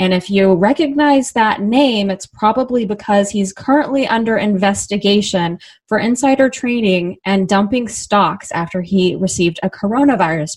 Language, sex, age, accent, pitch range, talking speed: English, female, 20-39, American, 180-215 Hz, 135 wpm